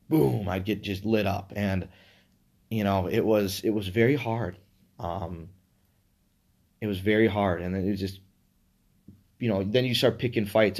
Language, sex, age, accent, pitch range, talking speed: English, male, 20-39, American, 95-125 Hz, 180 wpm